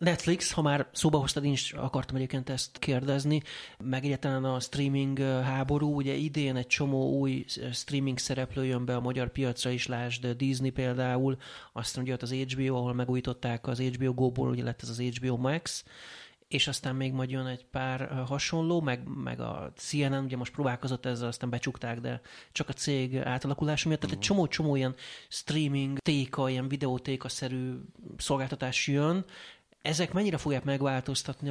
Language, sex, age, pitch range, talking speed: Hungarian, male, 30-49, 130-150 Hz, 160 wpm